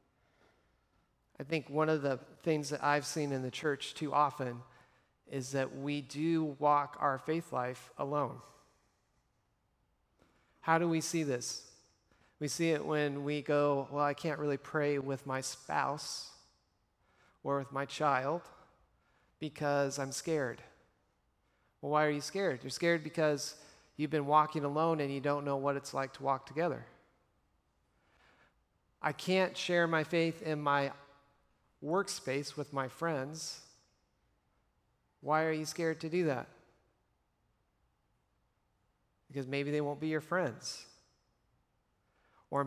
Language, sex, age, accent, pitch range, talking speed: English, male, 40-59, American, 140-165 Hz, 135 wpm